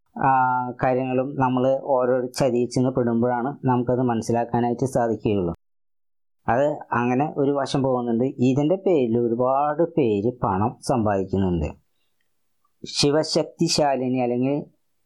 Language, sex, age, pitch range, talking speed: Malayalam, female, 20-39, 115-140 Hz, 80 wpm